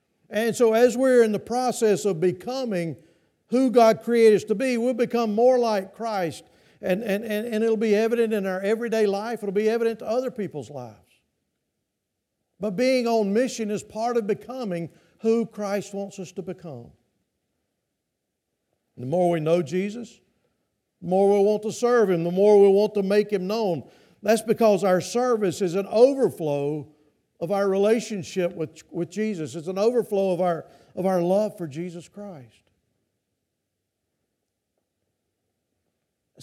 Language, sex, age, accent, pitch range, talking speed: English, male, 50-69, American, 145-225 Hz, 160 wpm